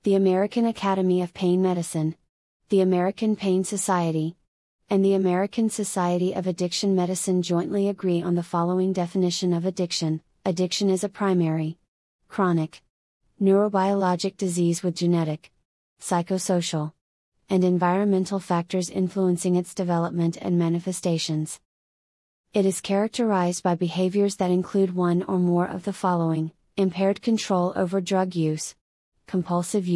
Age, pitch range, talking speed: 30-49, 175-195 Hz, 125 wpm